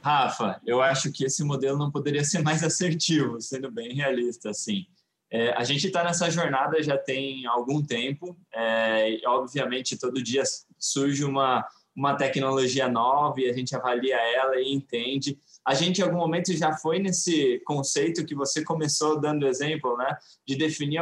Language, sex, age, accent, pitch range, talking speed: English, male, 20-39, Brazilian, 140-170 Hz, 170 wpm